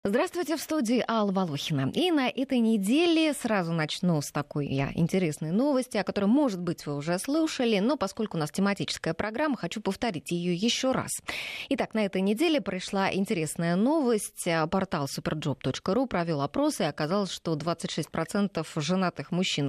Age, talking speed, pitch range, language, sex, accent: 20-39, 150 wpm, 160-225 Hz, Russian, female, native